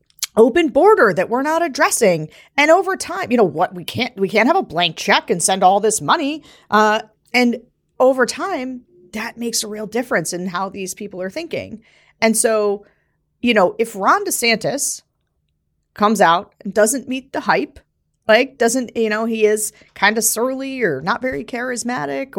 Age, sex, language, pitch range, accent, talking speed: 40-59, female, English, 200-260 Hz, American, 180 wpm